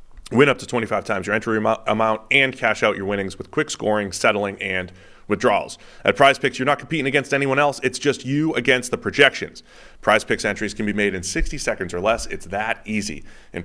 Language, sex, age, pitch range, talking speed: English, male, 30-49, 105-140 Hz, 205 wpm